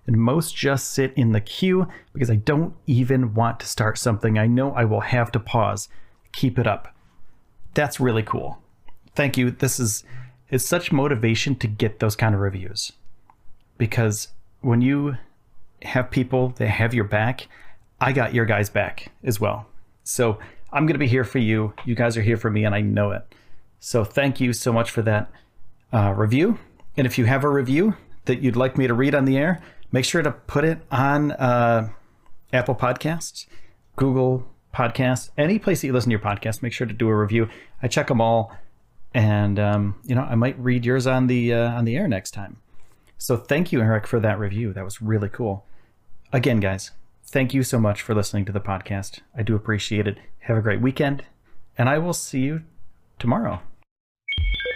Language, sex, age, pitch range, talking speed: English, male, 40-59, 105-130 Hz, 195 wpm